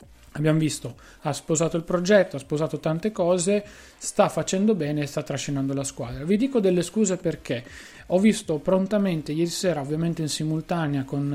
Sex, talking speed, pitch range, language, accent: male, 170 wpm, 150-195 Hz, Italian, native